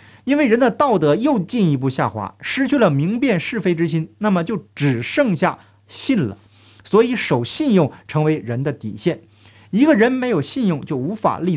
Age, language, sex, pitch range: 50-69, Chinese, male, 130-205 Hz